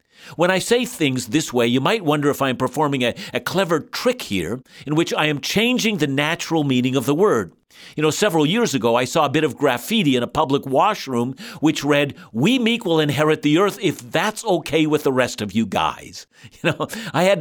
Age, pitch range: 60-79, 135-185 Hz